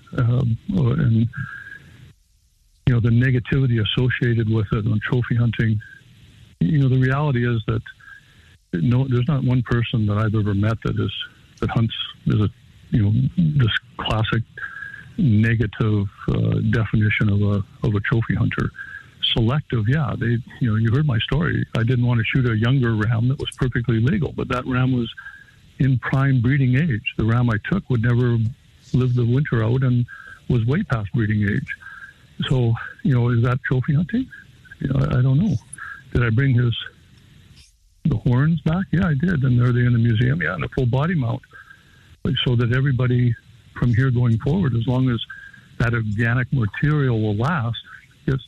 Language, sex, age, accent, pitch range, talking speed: English, male, 60-79, American, 115-135 Hz, 175 wpm